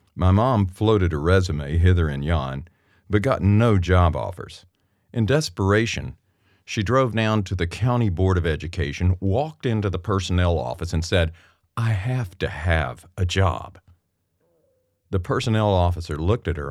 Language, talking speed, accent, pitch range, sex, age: English, 155 wpm, American, 85-105 Hz, male, 50-69